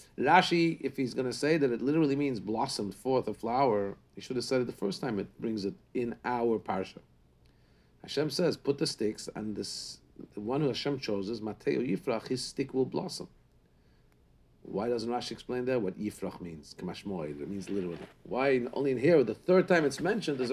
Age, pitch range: 50-69, 105-155 Hz